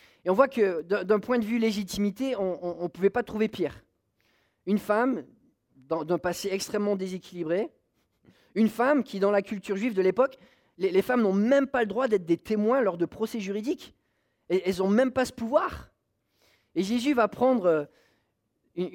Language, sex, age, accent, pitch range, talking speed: English, male, 30-49, French, 180-240 Hz, 185 wpm